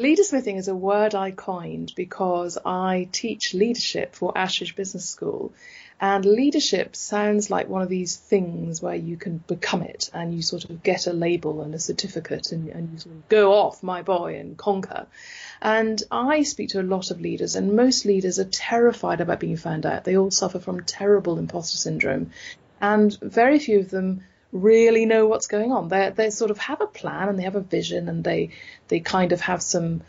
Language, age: English, 30-49